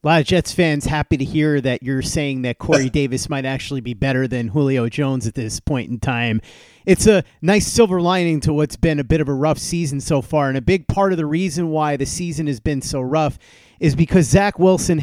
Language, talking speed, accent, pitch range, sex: English, 240 wpm, American, 140-180 Hz, male